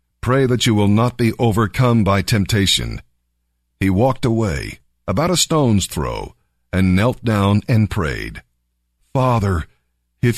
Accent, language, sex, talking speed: American, English, male, 135 wpm